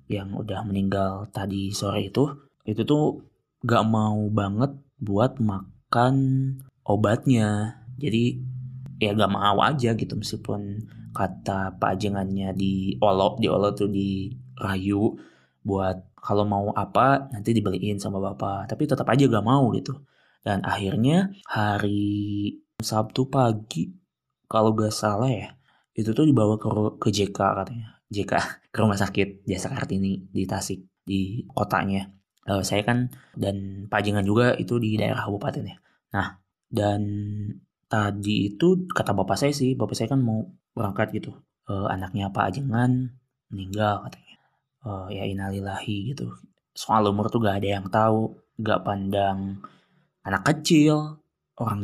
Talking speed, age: 135 wpm, 20-39